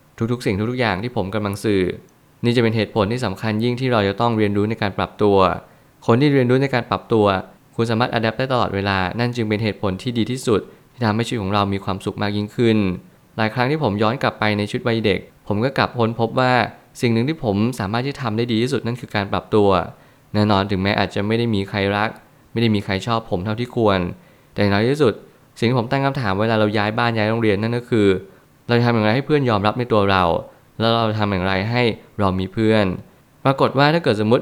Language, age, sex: Thai, 20-39, male